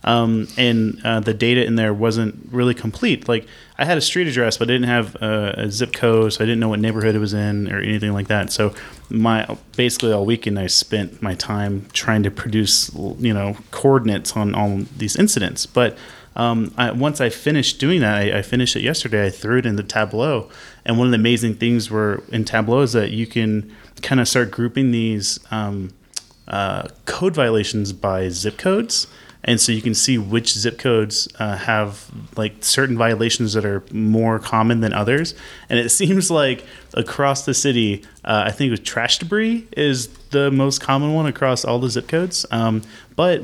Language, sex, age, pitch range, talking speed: English, male, 30-49, 105-125 Hz, 200 wpm